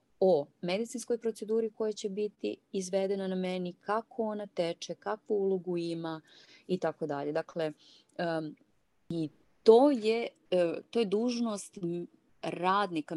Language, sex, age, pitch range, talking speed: Croatian, female, 30-49, 155-210 Hz, 115 wpm